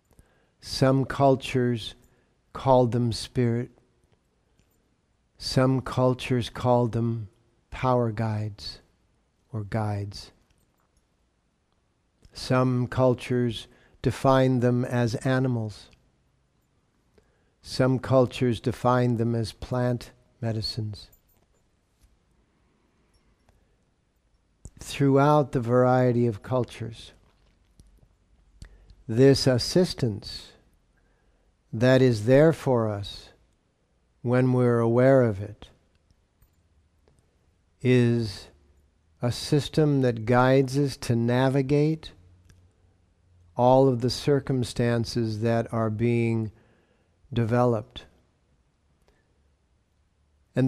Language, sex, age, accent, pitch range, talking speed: English, male, 60-79, American, 95-130 Hz, 70 wpm